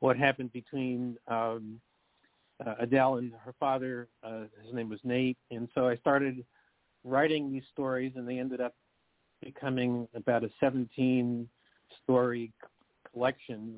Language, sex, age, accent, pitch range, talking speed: English, male, 50-69, American, 115-135 Hz, 130 wpm